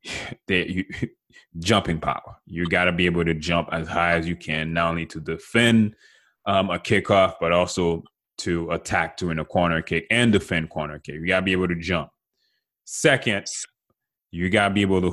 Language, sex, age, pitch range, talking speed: English, male, 20-39, 85-100 Hz, 185 wpm